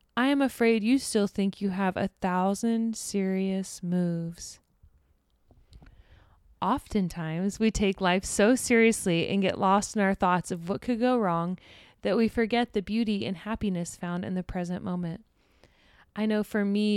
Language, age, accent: English, 20-39, American